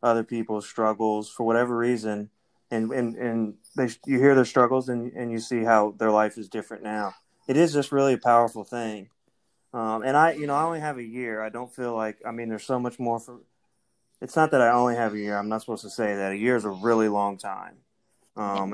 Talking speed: 235 wpm